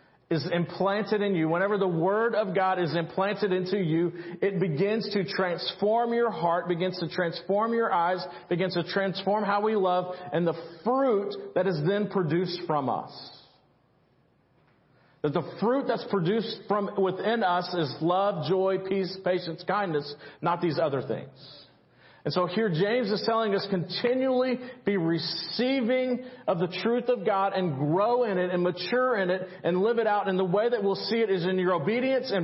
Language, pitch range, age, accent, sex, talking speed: English, 160-210 Hz, 40-59, American, male, 180 wpm